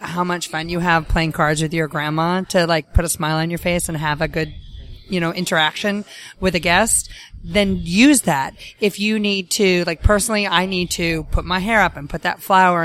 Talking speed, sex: 225 wpm, female